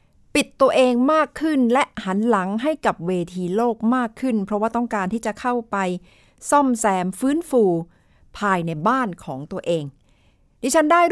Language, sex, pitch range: Thai, female, 170-245 Hz